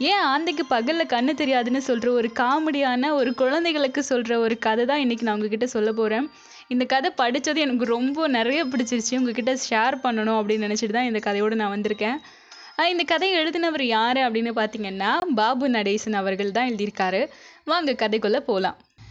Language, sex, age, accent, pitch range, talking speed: Tamil, female, 10-29, native, 220-300 Hz, 155 wpm